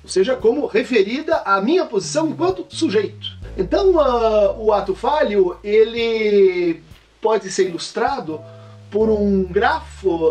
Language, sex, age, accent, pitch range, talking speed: Portuguese, male, 50-69, Brazilian, 170-270 Hz, 115 wpm